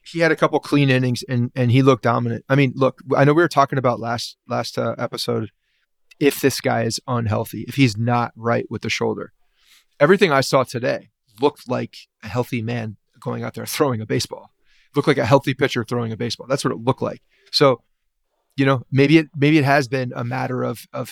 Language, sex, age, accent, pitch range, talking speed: English, male, 30-49, American, 120-140 Hz, 220 wpm